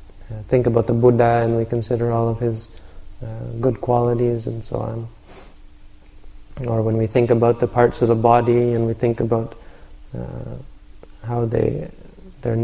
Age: 20-39